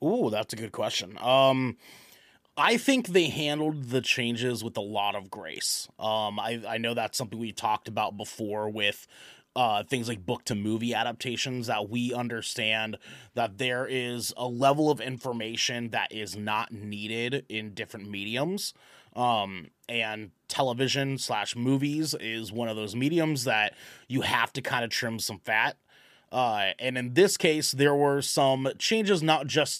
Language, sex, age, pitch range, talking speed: English, male, 30-49, 110-135 Hz, 165 wpm